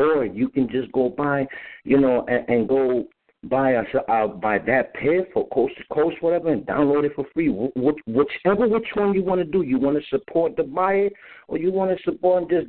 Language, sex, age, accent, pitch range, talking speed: English, male, 50-69, American, 105-155 Hz, 220 wpm